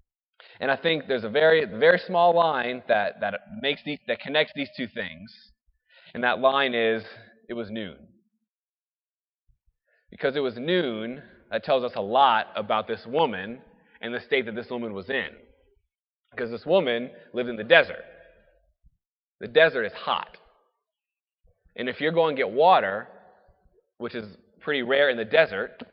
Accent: American